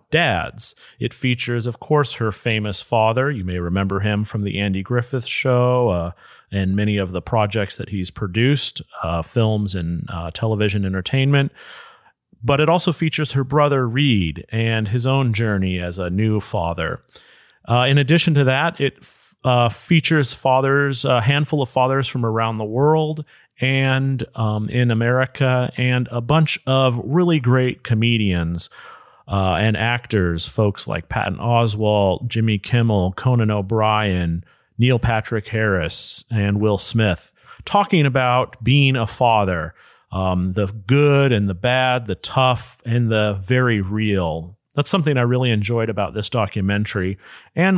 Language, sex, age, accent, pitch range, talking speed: English, male, 30-49, American, 105-135 Hz, 150 wpm